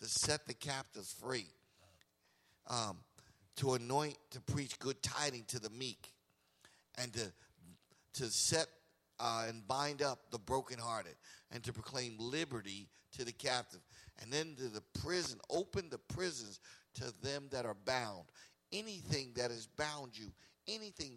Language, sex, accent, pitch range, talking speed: English, male, American, 115-145 Hz, 145 wpm